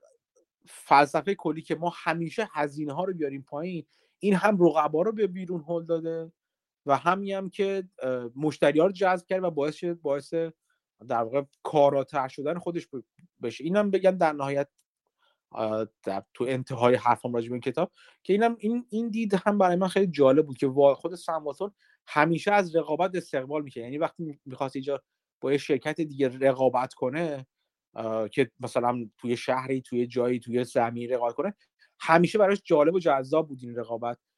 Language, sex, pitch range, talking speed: Persian, male, 135-185 Hz, 160 wpm